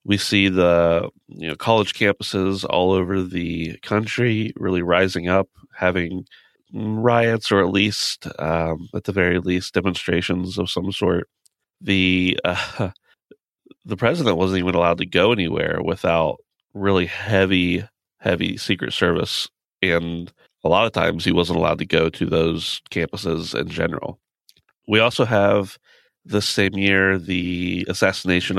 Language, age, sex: English, 30-49, male